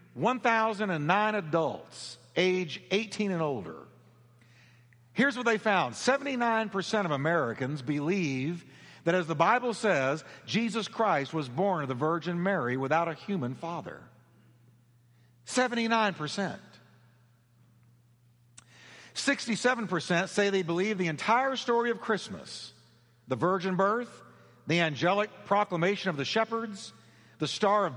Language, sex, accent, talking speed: English, male, American, 115 wpm